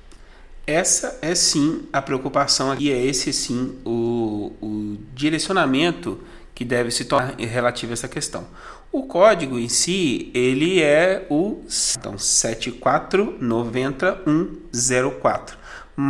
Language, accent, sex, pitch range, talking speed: Portuguese, Brazilian, male, 125-165 Hz, 105 wpm